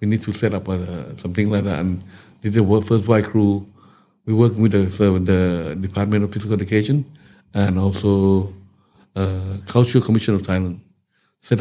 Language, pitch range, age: English, 95-110 Hz, 60-79